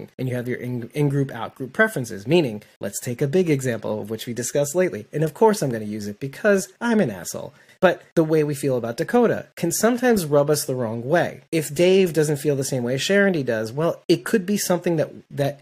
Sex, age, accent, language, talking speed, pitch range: male, 30-49, American, English, 235 wpm, 130-185 Hz